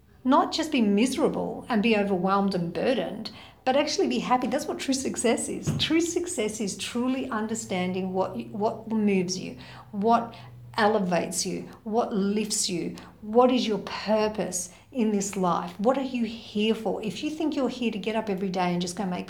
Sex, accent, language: female, Australian, English